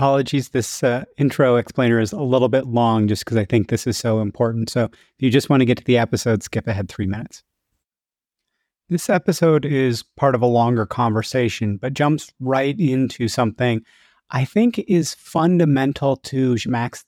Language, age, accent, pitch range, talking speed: English, 30-49, American, 125-165 Hz, 180 wpm